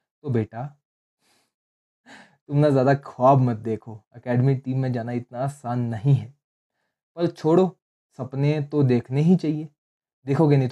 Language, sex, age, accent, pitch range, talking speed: Hindi, male, 20-39, native, 120-160 Hz, 140 wpm